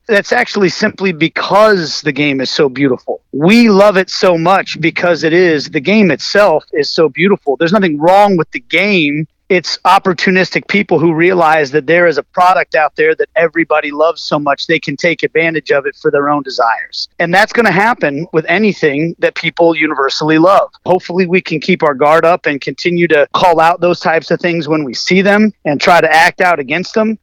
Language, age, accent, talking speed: English, 40-59, American, 205 wpm